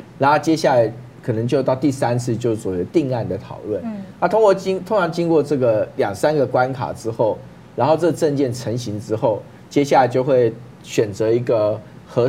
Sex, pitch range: male, 110-150 Hz